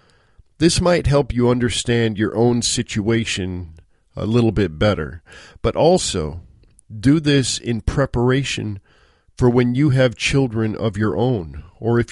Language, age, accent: English, 50-69, American